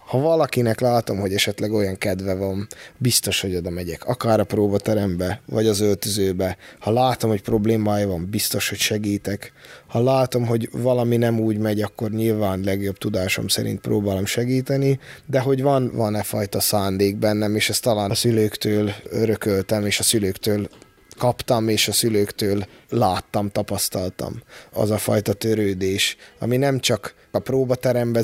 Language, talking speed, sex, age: Hungarian, 150 wpm, male, 20-39